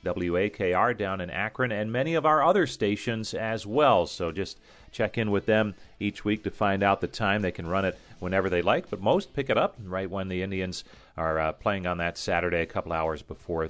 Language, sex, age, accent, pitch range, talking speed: English, male, 40-59, American, 90-115 Hz, 225 wpm